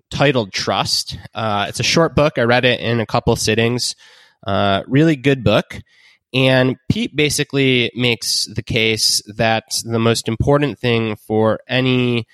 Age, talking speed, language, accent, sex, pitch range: 20-39, 150 wpm, English, American, male, 105-130 Hz